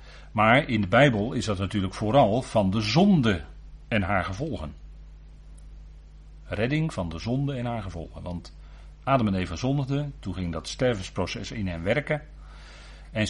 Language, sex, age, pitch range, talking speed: Dutch, male, 40-59, 85-120 Hz, 155 wpm